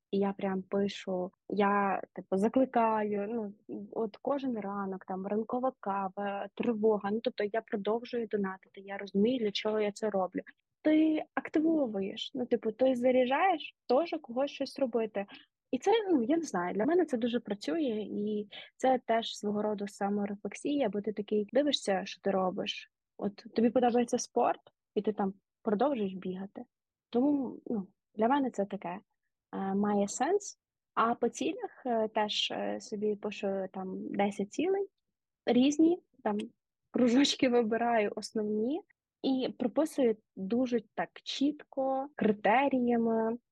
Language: Ukrainian